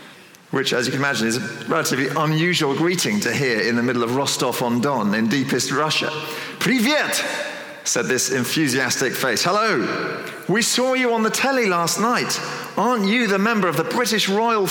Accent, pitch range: British, 130-180 Hz